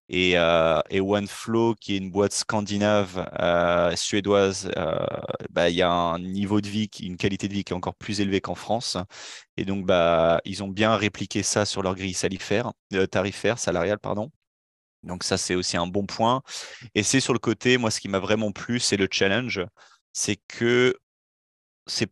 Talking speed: 195 wpm